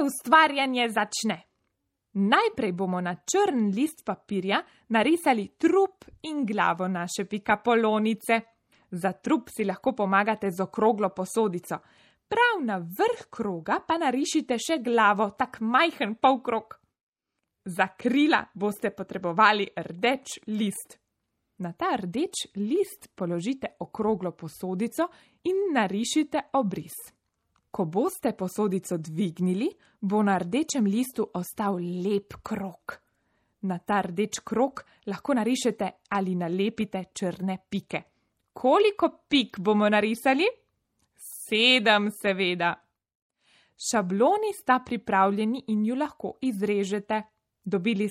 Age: 20-39